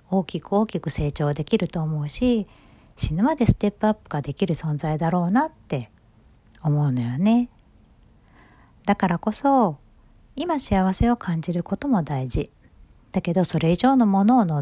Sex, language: female, Japanese